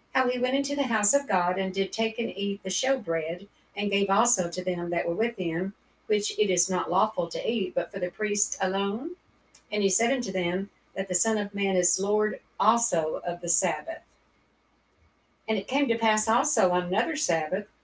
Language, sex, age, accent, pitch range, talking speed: English, female, 50-69, American, 185-225 Hz, 205 wpm